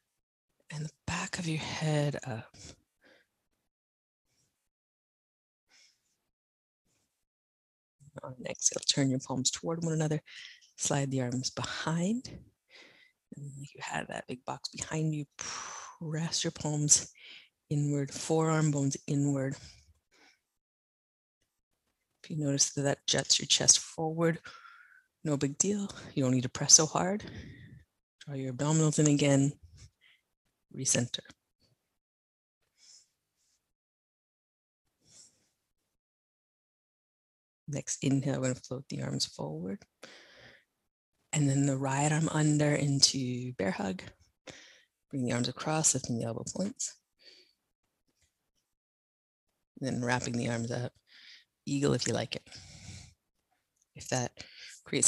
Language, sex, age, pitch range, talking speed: English, female, 30-49, 115-155 Hz, 110 wpm